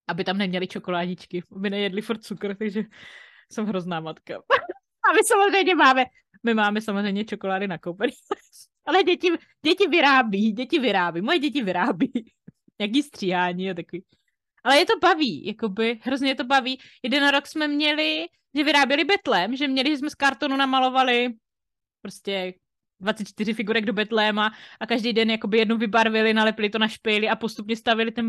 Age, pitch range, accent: 20-39, 200-280 Hz, native